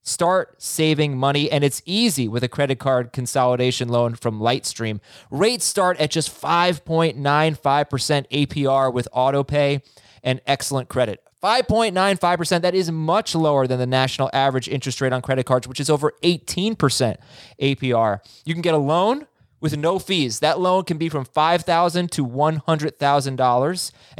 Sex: male